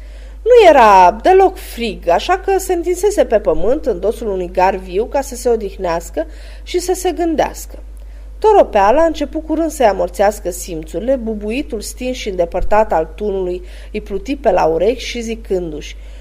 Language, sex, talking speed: Romanian, female, 160 wpm